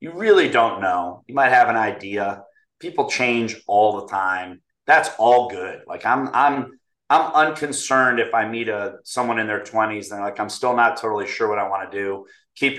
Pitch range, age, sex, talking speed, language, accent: 105-140 Hz, 30-49, male, 205 wpm, English, American